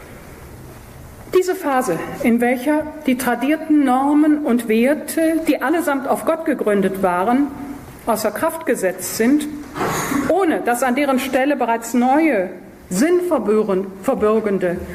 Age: 50-69